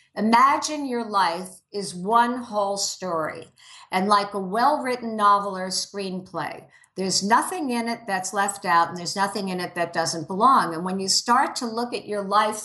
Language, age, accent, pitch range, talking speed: English, 50-69, American, 195-250 Hz, 180 wpm